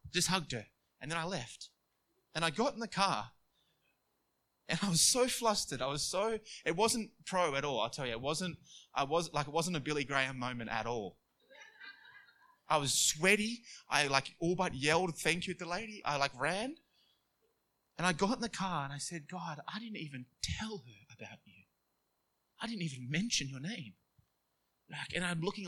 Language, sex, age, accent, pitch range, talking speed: English, male, 20-39, Australian, 135-185 Hz, 200 wpm